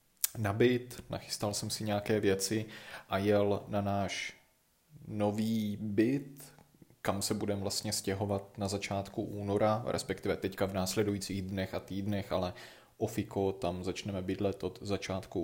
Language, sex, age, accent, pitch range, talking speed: Czech, male, 20-39, native, 95-105 Hz, 135 wpm